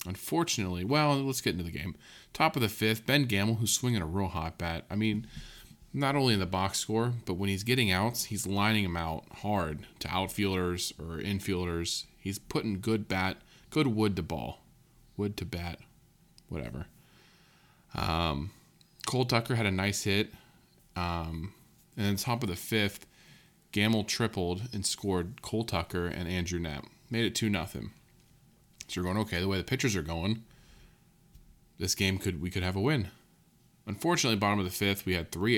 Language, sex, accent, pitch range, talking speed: English, male, American, 90-110 Hz, 180 wpm